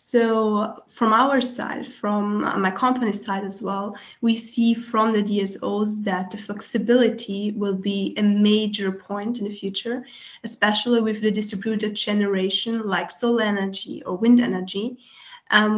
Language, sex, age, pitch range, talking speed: English, female, 10-29, 200-230 Hz, 145 wpm